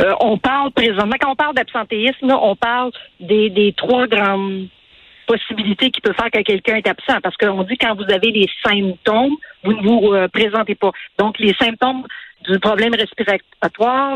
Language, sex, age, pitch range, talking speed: French, female, 50-69, 205-260 Hz, 180 wpm